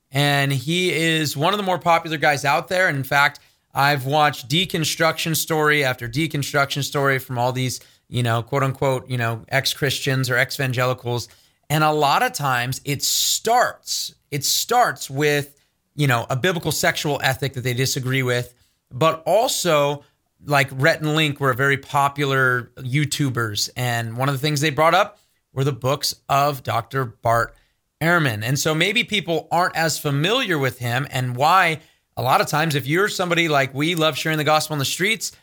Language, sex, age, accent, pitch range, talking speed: English, male, 30-49, American, 130-165 Hz, 175 wpm